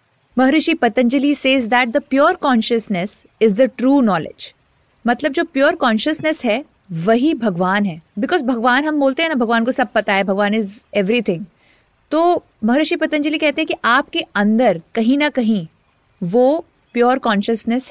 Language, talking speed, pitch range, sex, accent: Hindi, 160 wpm, 205-285 Hz, female, native